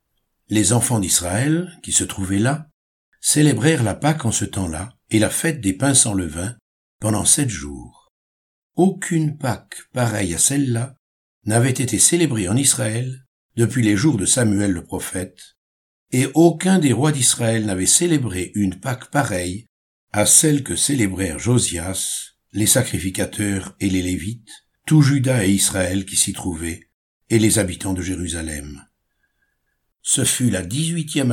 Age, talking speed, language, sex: 60-79, 145 wpm, French, male